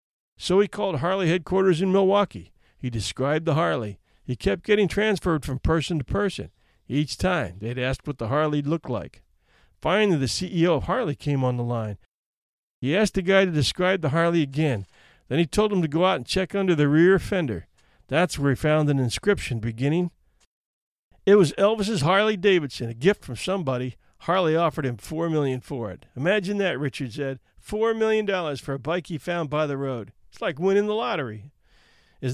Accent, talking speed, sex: American, 190 wpm, male